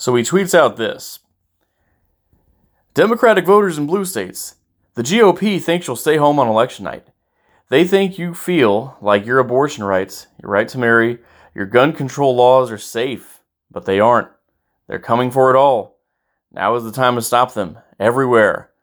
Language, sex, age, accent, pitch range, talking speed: English, male, 30-49, American, 100-130 Hz, 170 wpm